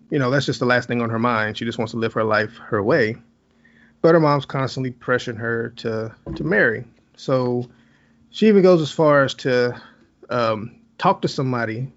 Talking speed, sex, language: 200 wpm, male, English